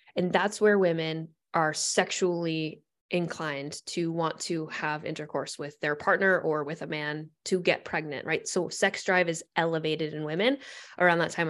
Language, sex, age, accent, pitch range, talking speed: English, female, 20-39, American, 165-215 Hz, 170 wpm